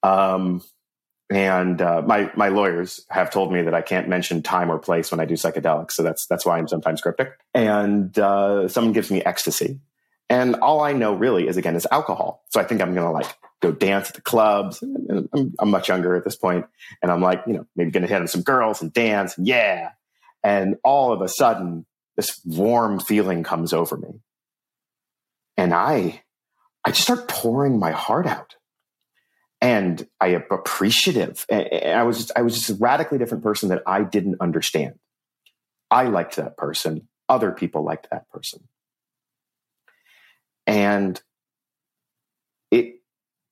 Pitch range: 90-115 Hz